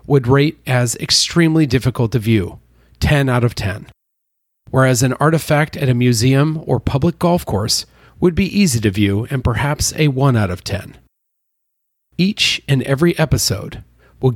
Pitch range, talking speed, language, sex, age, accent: 115-155 Hz, 160 wpm, English, male, 40-59, American